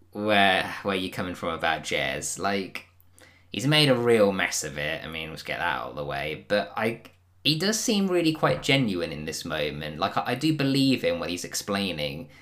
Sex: male